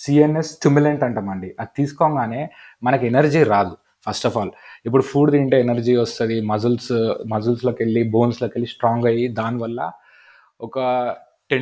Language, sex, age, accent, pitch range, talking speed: Telugu, male, 20-39, native, 115-145 Hz, 140 wpm